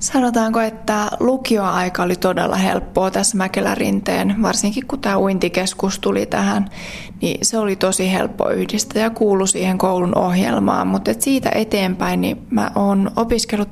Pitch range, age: 185-215 Hz, 20-39